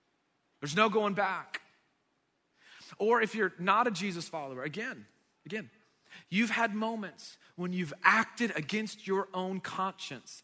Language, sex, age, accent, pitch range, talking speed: English, male, 30-49, American, 185-235 Hz, 130 wpm